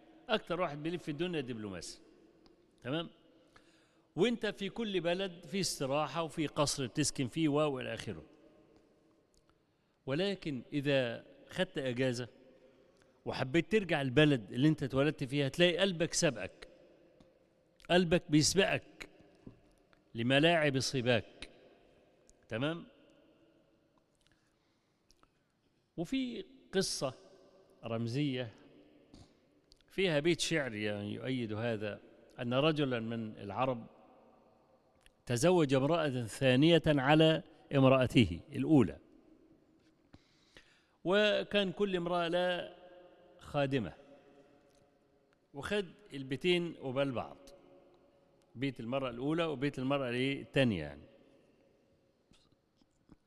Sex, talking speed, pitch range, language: male, 80 wpm, 130-175 Hz, Arabic